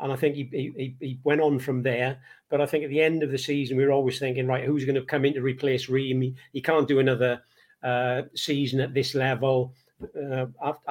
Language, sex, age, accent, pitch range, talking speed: English, male, 50-69, British, 130-155 Hz, 235 wpm